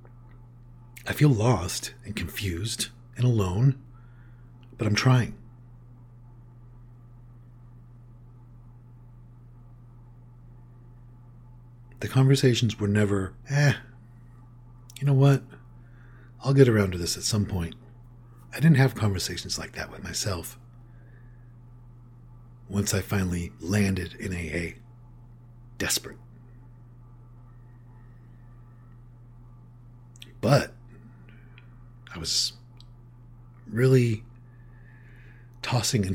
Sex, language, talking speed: male, English, 80 wpm